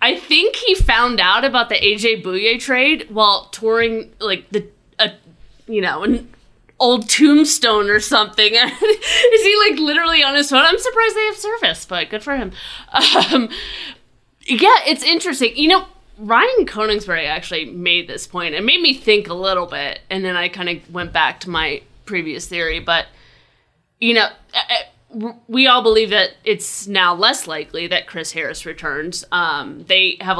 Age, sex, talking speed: 20-39, female, 170 wpm